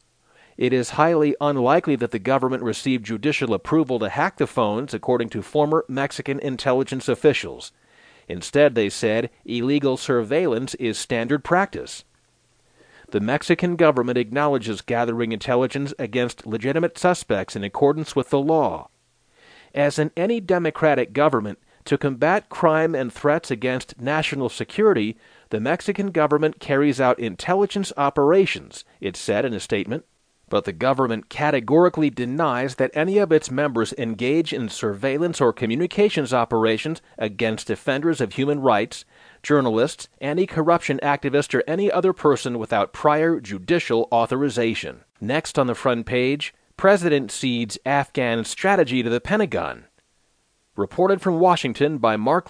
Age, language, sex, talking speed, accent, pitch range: 40-59, English, male, 135 wpm, American, 120-155 Hz